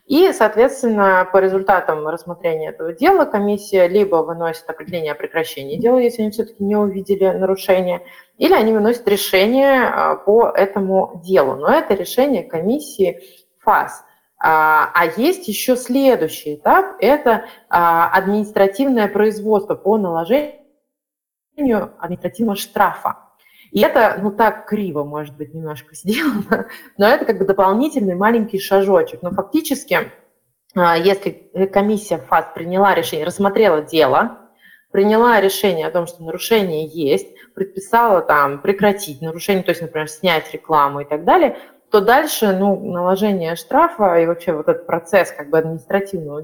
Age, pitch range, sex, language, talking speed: 20-39, 170-235 Hz, female, Russian, 130 wpm